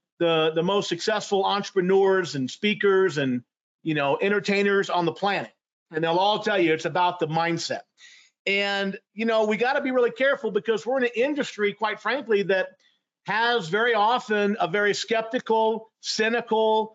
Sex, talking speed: male, 165 wpm